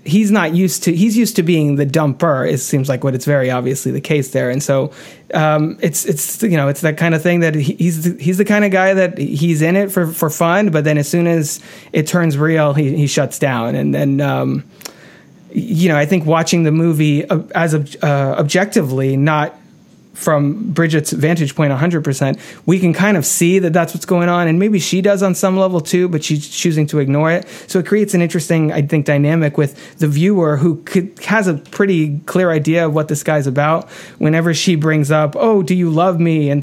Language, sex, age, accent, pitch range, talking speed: English, male, 30-49, American, 145-175 Hz, 220 wpm